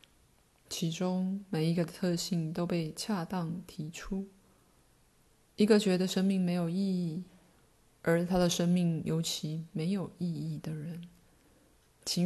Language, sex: Chinese, female